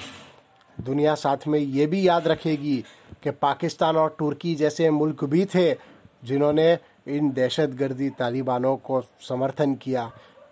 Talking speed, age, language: 130 wpm, 30-49, Hindi